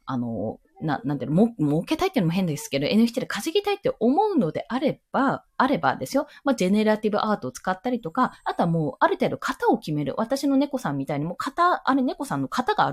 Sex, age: female, 20-39